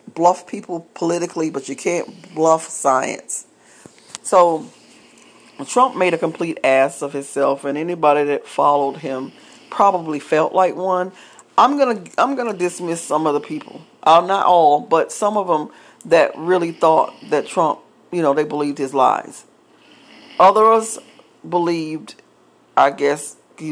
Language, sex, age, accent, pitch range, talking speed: English, female, 40-59, American, 145-190 Hz, 145 wpm